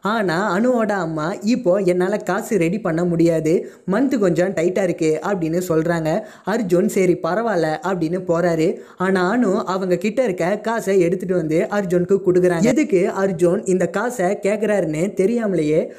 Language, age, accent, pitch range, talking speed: Tamil, 20-39, native, 170-210 Hz, 135 wpm